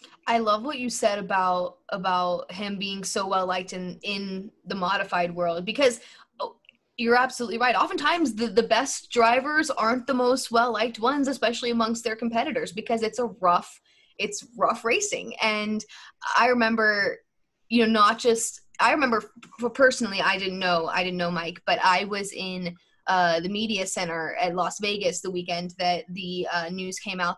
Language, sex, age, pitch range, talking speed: English, female, 10-29, 185-240 Hz, 170 wpm